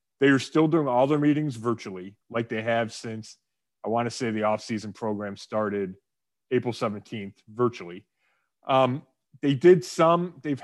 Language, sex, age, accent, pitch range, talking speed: English, male, 30-49, American, 115-145 Hz, 165 wpm